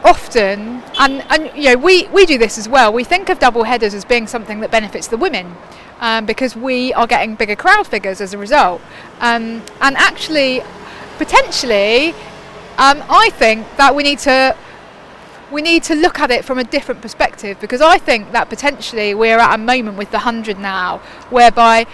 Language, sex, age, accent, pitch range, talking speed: English, female, 30-49, British, 225-290 Hz, 195 wpm